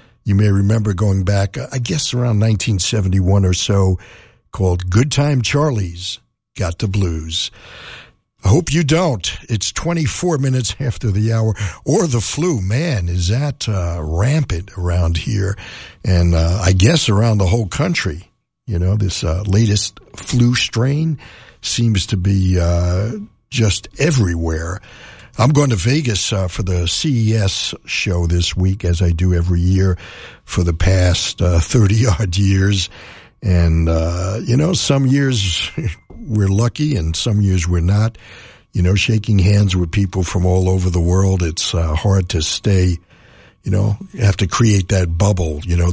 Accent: American